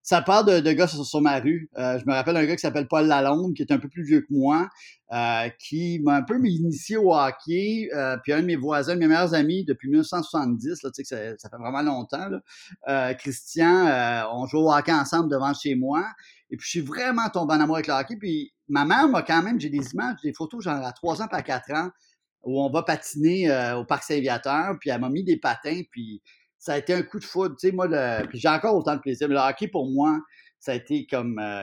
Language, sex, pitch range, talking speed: French, male, 140-180 Hz, 265 wpm